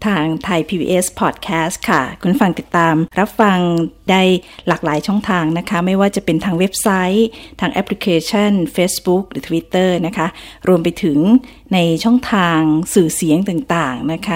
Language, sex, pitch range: Thai, female, 165-200 Hz